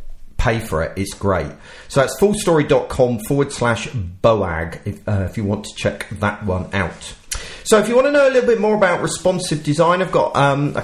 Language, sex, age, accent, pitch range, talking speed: English, male, 40-59, British, 105-140 Hz, 210 wpm